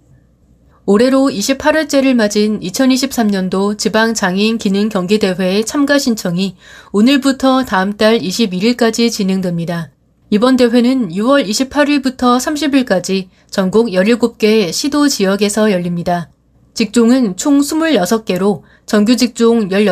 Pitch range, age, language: 200-260 Hz, 30-49, Korean